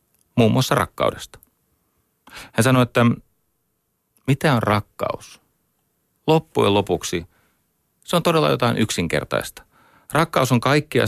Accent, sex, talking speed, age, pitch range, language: native, male, 105 wpm, 40-59, 85-115 Hz, Finnish